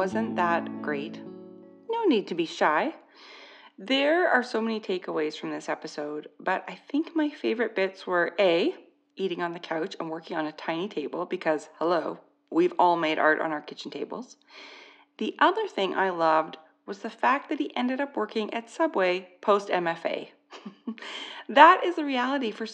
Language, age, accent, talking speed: English, 30-49, American, 175 wpm